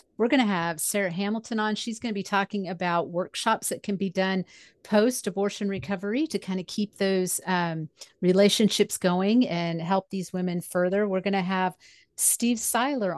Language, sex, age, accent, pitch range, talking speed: English, female, 40-59, American, 175-210 Hz, 180 wpm